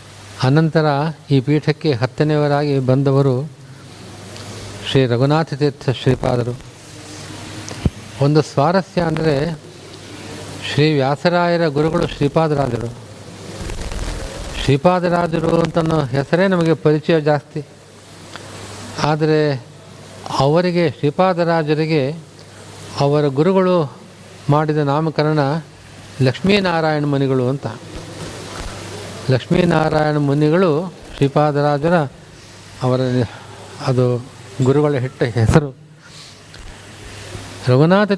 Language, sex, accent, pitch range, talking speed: Kannada, male, native, 115-155 Hz, 60 wpm